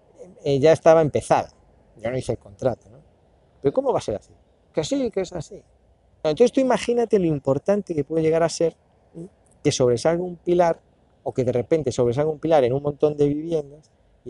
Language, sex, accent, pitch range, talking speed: Spanish, male, Spanish, 125-180 Hz, 205 wpm